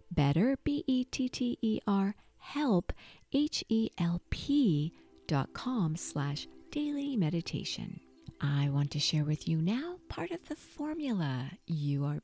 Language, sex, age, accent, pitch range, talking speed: English, female, 50-69, American, 145-200 Hz, 110 wpm